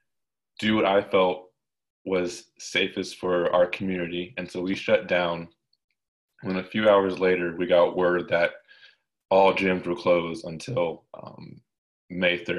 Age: 20-39